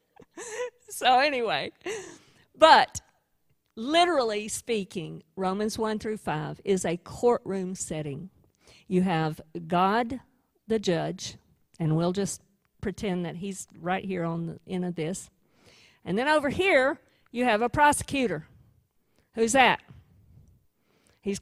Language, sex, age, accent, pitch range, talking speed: English, female, 50-69, American, 190-290 Hz, 120 wpm